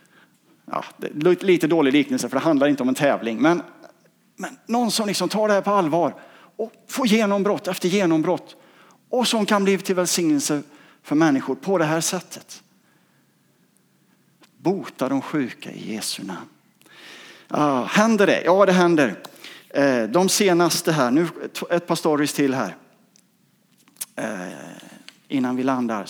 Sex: male